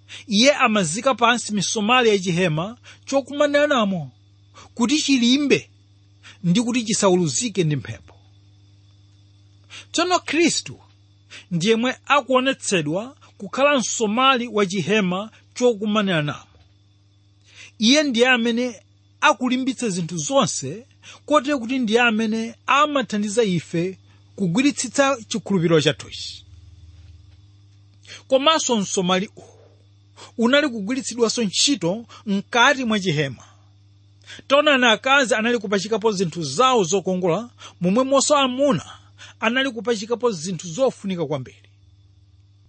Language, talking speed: English, 100 wpm